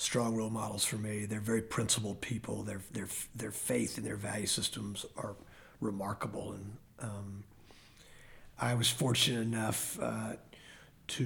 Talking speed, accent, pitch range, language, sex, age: 145 wpm, American, 105-125 Hz, English, male, 40-59